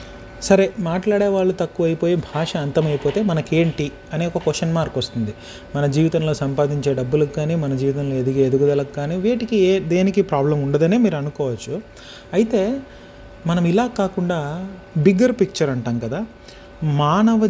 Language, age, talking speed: Telugu, 30-49, 130 wpm